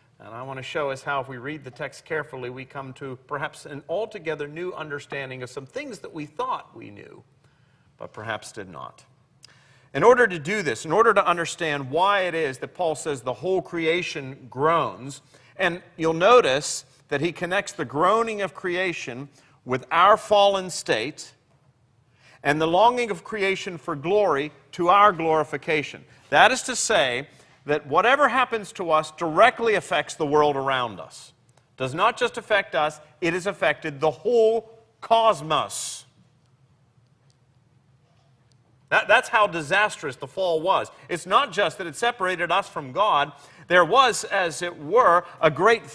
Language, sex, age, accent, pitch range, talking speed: English, male, 40-59, American, 135-190 Hz, 165 wpm